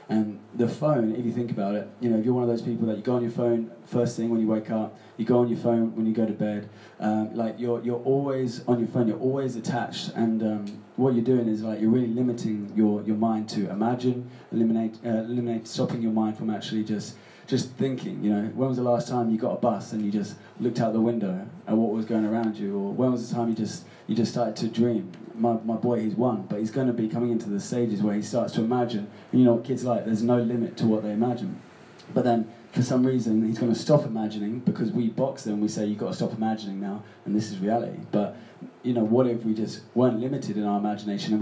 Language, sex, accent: English, male, British